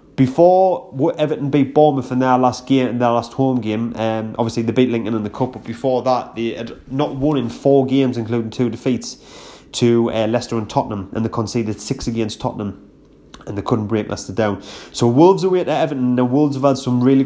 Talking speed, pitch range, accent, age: 215 wpm, 110-135 Hz, British, 20-39